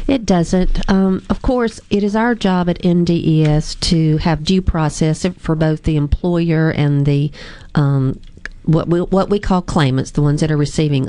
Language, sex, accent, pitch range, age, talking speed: English, female, American, 150-180 Hz, 40-59, 180 wpm